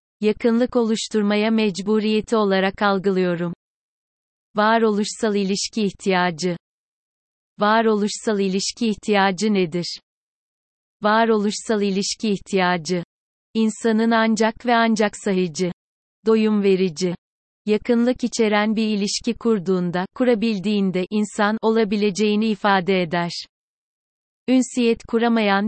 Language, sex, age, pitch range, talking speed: Turkish, female, 30-49, 195-225 Hz, 85 wpm